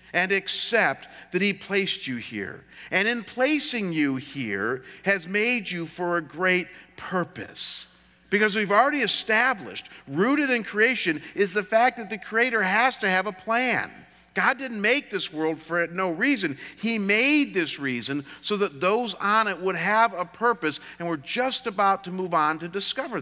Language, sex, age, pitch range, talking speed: English, male, 50-69, 145-210 Hz, 175 wpm